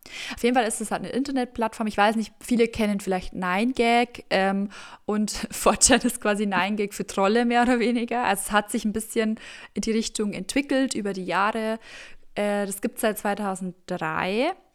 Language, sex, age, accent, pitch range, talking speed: German, female, 20-39, German, 190-225 Hz, 185 wpm